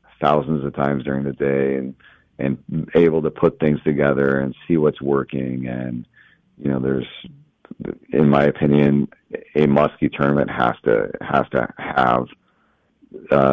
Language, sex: English, male